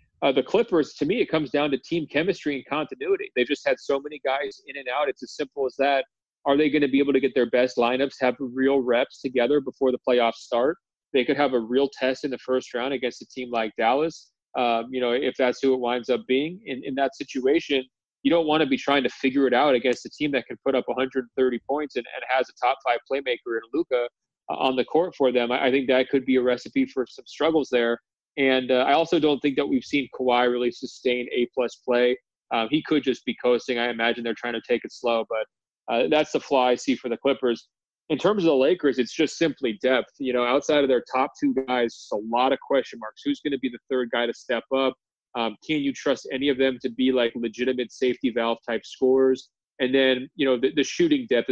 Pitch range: 120-140 Hz